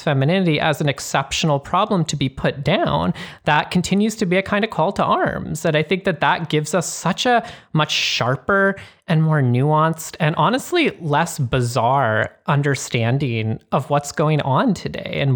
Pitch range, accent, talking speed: 130-170 Hz, American, 170 wpm